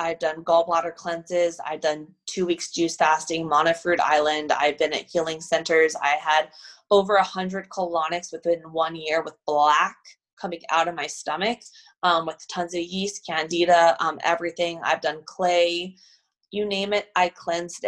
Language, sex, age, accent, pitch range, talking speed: English, female, 20-39, American, 165-195 Hz, 165 wpm